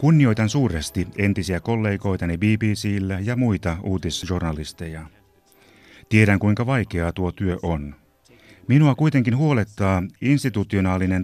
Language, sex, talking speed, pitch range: Finnish, male, 95 wpm, 85-110 Hz